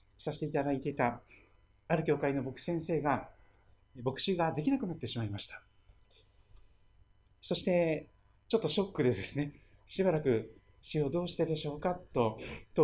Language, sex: Japanese, male